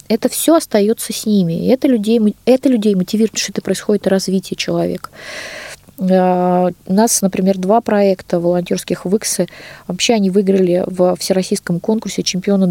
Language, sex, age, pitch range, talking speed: Russian, female, 20-39, 180-220 Hz, 135 wpm